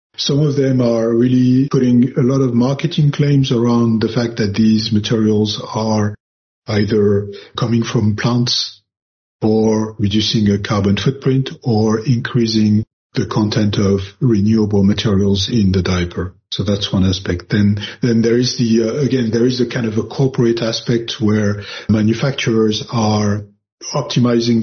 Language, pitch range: English, 100-120 Hz